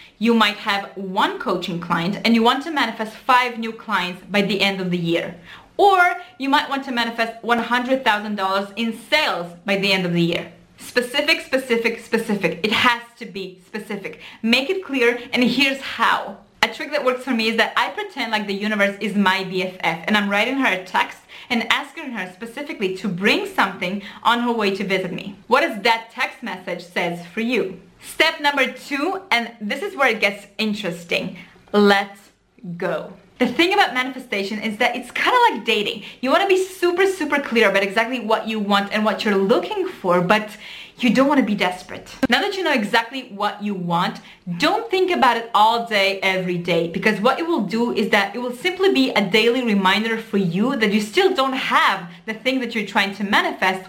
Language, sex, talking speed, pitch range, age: English, female, 205 wpm, 200-255 Hz, 20-39